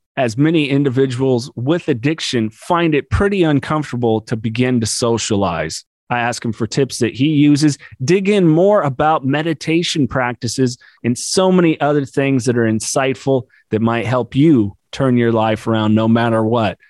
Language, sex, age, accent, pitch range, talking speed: English, male, 30-49, American, 115-145 Hz, 165 wpm